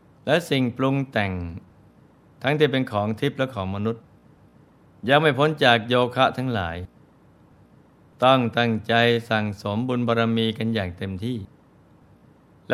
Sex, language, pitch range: male, Thai, 105-125 Hz